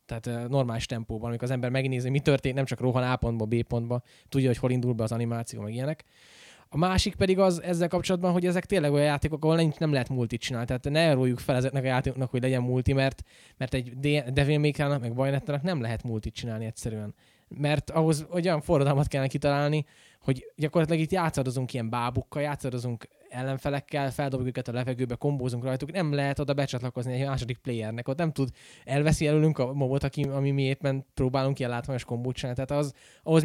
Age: 10-29